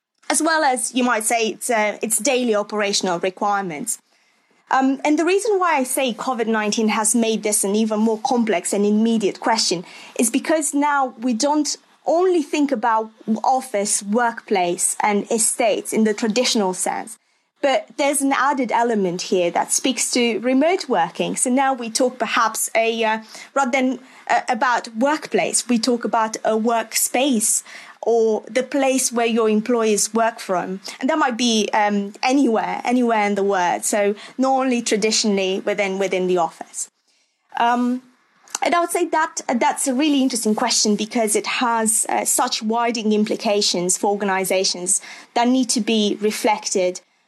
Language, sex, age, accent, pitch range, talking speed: English, female, 20-39, British, 210-265 Hz, 155 wpm